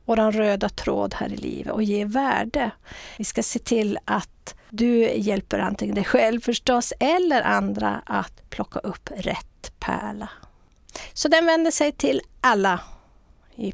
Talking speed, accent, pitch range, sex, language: 150 wpm, Swedish, 205-255 Hz, female, English